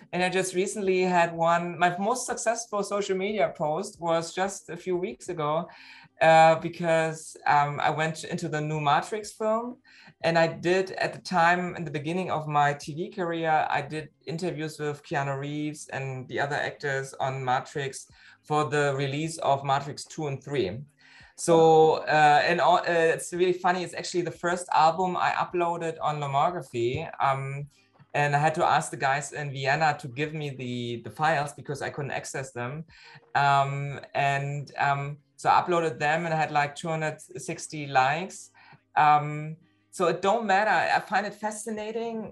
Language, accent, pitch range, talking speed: English, German, 145-180 Hz, 170 wpm